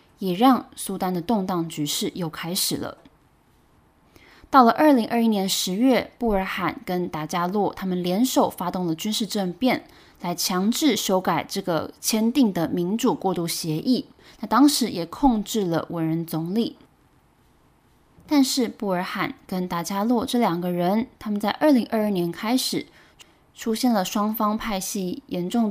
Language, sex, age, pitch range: Chinese, female, 20-39, 180-235 Hz